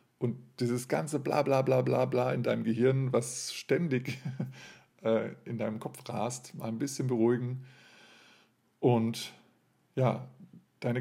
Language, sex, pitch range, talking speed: German, male, 115-130 Hz, 135 wpm